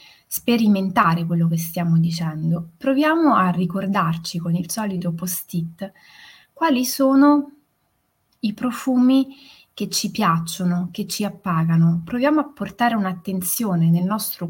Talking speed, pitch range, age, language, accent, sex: 115 wpm, 180-225 Hz, 20-39, Italian, native, female